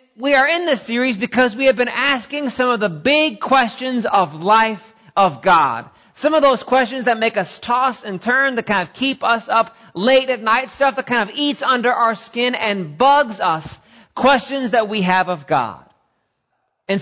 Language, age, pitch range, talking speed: English, 40-59, 190-255 Hz, 200 wpm